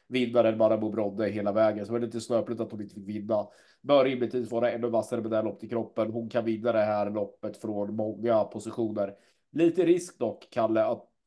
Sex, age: male, 30-49